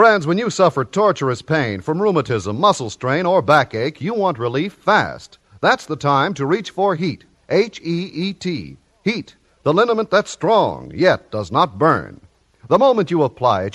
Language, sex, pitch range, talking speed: English, male, 145-195 Hz, 165 wpm